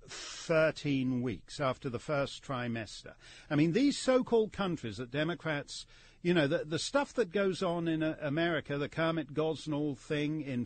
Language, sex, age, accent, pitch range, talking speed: English, male, 50-69, British, 135-220 Hz, 165 wpm